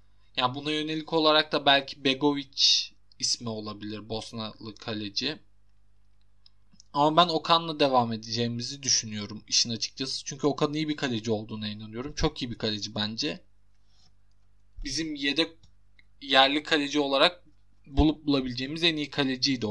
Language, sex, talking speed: Turkish, male, 130 wpm